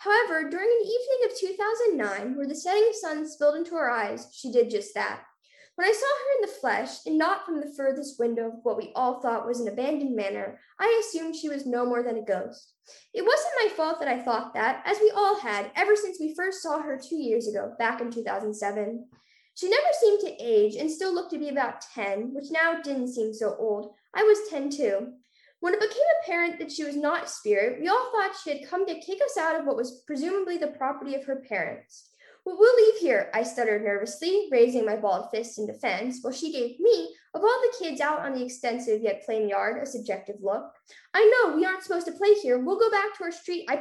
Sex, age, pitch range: female, 10-29, 240-385 Hz